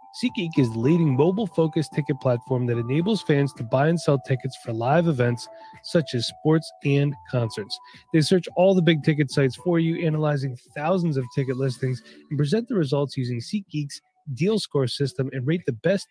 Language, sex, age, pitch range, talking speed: English, male, 30-49, 130-165 Hz, 185 wpm